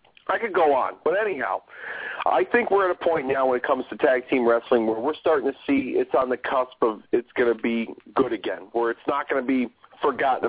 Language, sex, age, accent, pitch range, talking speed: English, male, 40-59, American, 130-190 Hz, 245 wpm